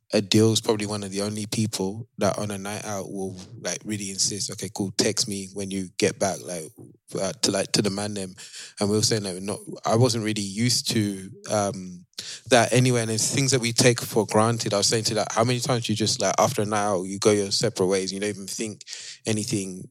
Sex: male